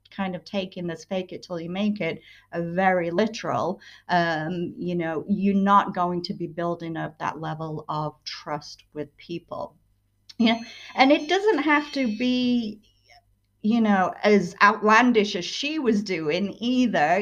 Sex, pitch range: female, 180-225 Hz